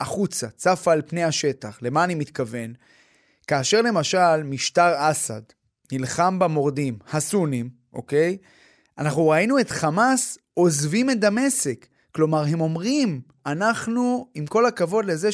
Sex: male